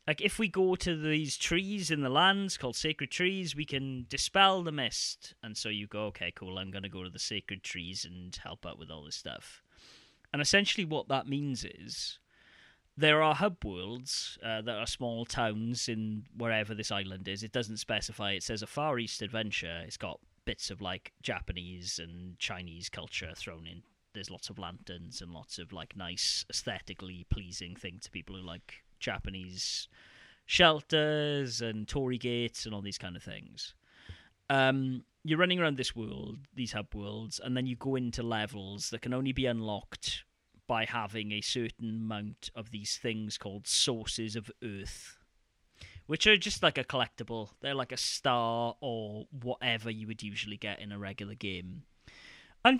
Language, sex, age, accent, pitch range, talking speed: English, male, 30-49, British, 100-135 Hz, 180 wpm